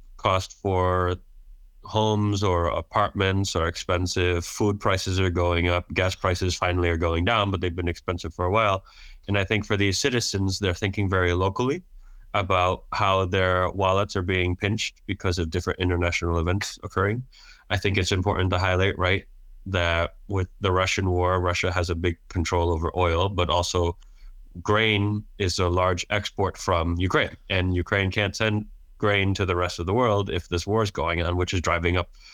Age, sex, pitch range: 20-39, male, 85-100 Hz